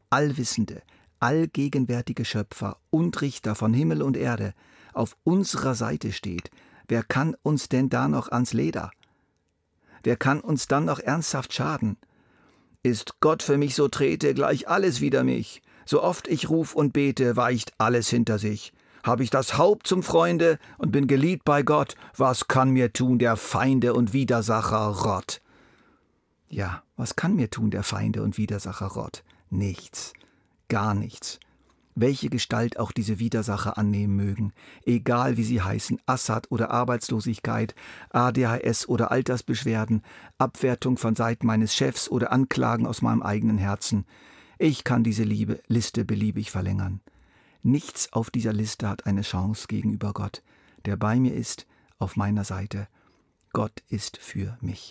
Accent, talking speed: German, 150 wpm